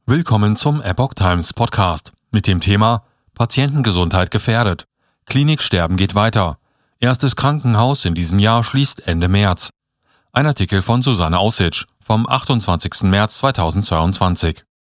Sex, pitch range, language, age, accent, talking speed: male, 95-130 Hz, German, 40-59, German, 120 wpm